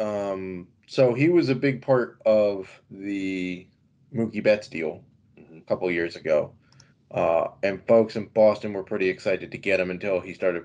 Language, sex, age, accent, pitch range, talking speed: English, male, 20-39, American, 95-125 Hz, 170 wpm